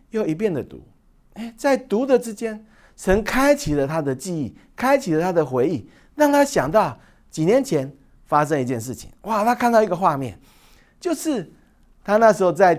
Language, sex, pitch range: Chinese, male, 135-220 Hz